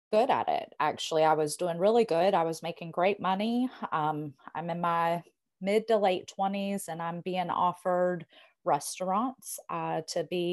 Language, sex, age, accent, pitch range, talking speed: English, female, 30-49, American, 170-210 Hz, 170 wpm